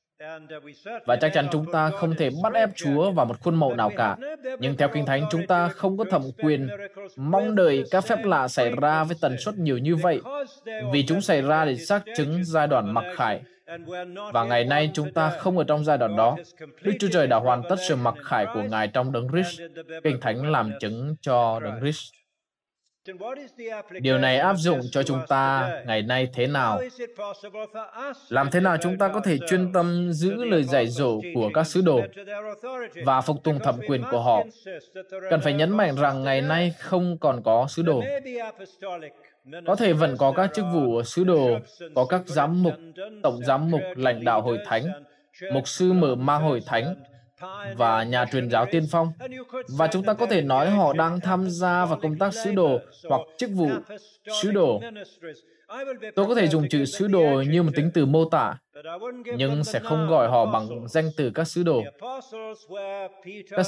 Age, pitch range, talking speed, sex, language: 20-39, 140-190 Hz, 195 wpm, male, Vietnamese